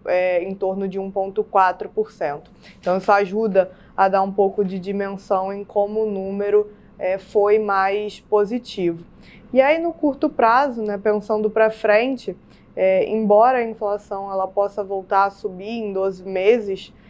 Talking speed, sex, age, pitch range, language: 150 wpm, female, 20-39, 195-225 Hz, Portuguese